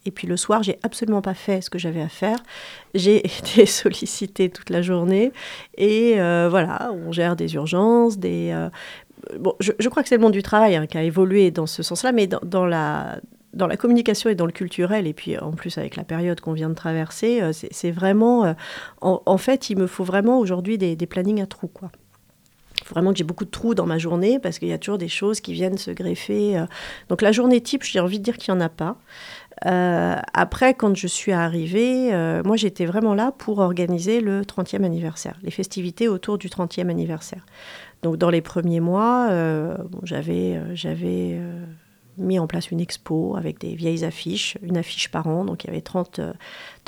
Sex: female